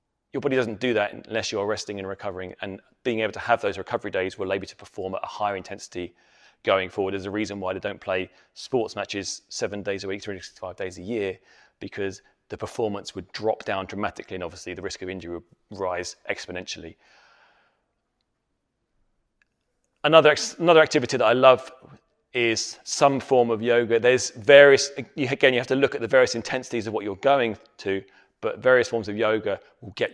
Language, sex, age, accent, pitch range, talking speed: English, male, 30-49, British, 105-130 Hz, 200 wpm